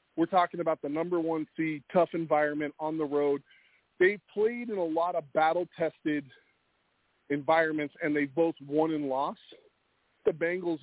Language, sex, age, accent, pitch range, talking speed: English, male, 40-59, American, 155-195 Hz, 155 wpm